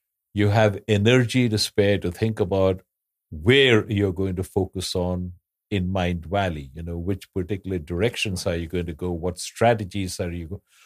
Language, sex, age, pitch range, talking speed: English, male, 60-79, 95-115 Hz, 175 wpm